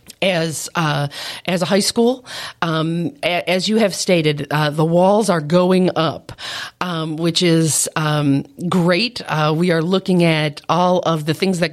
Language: English